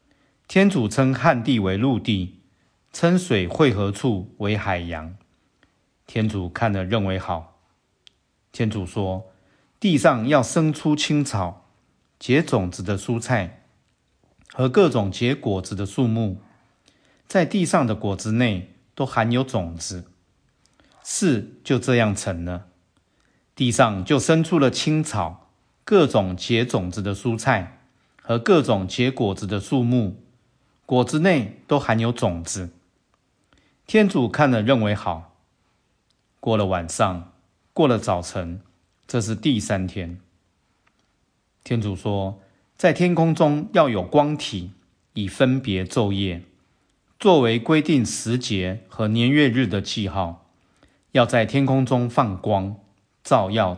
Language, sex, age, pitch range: Chinese, male, 50-69, 95-130 Hz